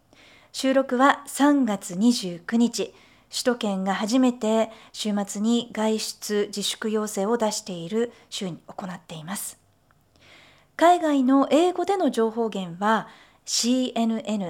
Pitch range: 195-235 Hz